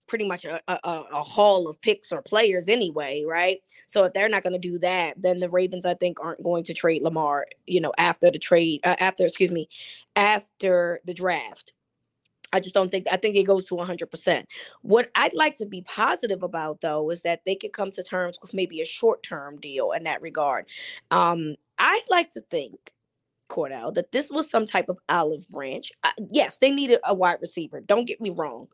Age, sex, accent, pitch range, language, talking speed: 20-39, female, American, 170-205 Hz, English, 205 wpm